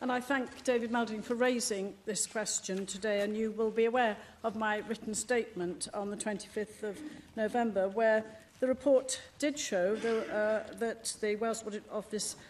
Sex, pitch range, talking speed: female, 210-245 Hz, 180 wpm